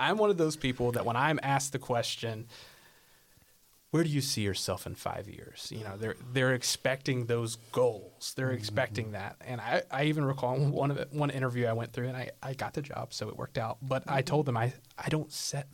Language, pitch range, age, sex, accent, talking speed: English, 115-140 Hz, 30-49, male, American, 230 wpm